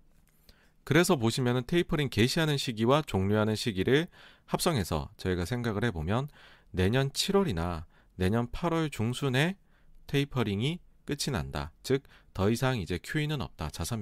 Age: 40-59